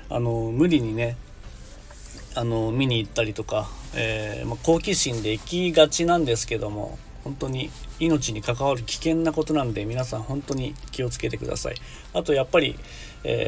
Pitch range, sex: 115-145 Hz, male